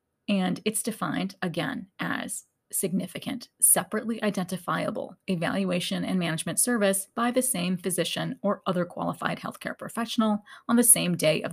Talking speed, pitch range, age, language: 135 wpm, 180-215 Hz, 30-49, English